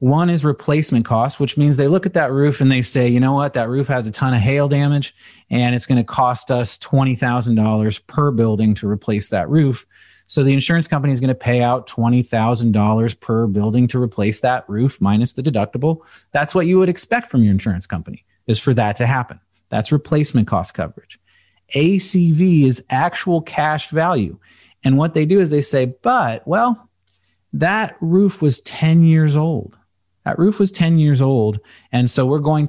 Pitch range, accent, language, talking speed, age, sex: 115-150 Hz, American, English, 195 wpm, 40-59, male